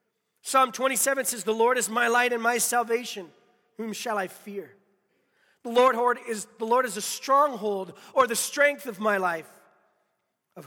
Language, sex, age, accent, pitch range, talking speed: English, male, 40-59, American, 155-235 Hz, 155 wpm